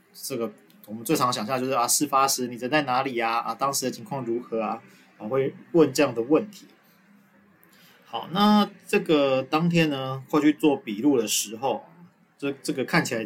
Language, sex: Chinese, male